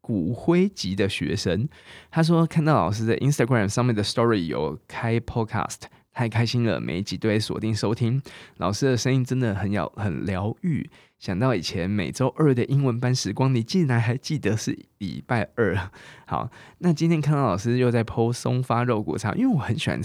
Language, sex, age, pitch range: Chinese, male, 20-39, 105-135 Hz